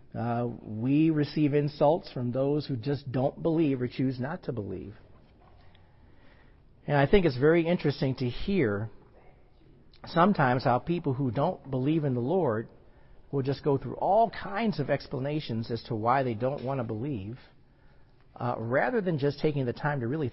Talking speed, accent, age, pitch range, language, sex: 170 wpm, American, 50-69, 120-150 Hz, English, male